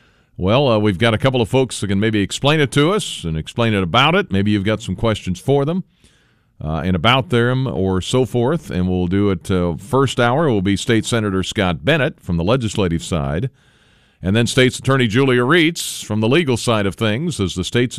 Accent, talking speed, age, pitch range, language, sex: American, 225 wpm, 50-69, 90-120 Hz, English, male